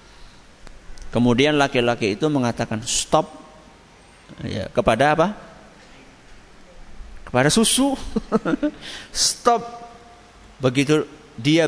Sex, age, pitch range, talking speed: male, 50-69, 110-180 Hz, 65 wpm